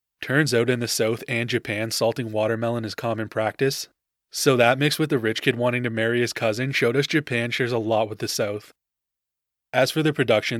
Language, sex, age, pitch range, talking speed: English, male, 20-39, 110-125 Hz, 210 wpm